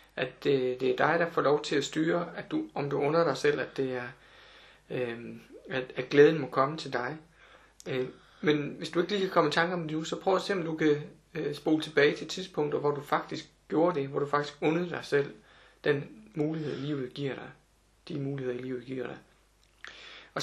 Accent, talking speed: native, 225 wpm